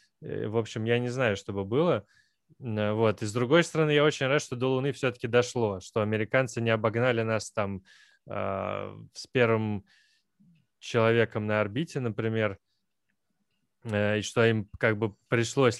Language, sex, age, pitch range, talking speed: Russian, male, 20-39, 110-140 Hz, 150 wpm